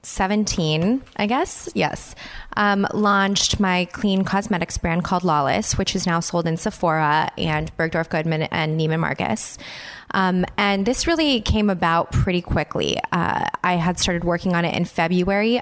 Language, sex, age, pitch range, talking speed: English, female, 20-39, 170-200 Hz, 160 wpm